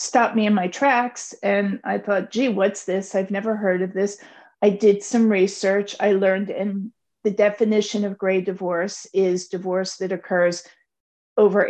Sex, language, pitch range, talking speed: female, English, 190-230 Hz, 170 wpm